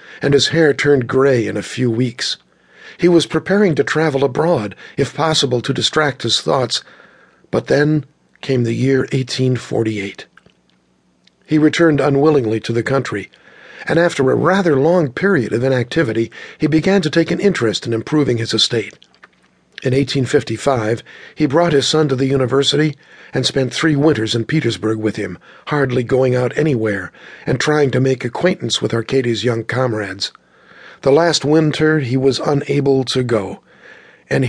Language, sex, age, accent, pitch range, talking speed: English, male, 50-69, American, 115-150 Hz, 155 wpm